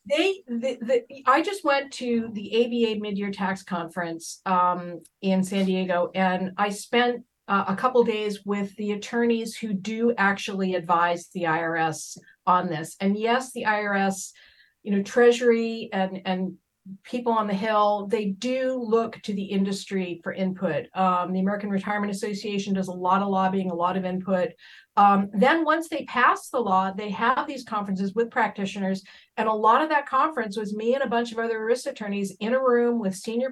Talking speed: 185 wpm